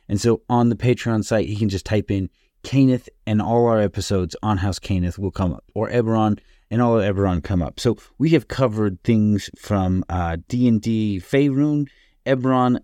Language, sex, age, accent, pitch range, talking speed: English, male, 30-49, American, 100-120 Hz, 185 wpm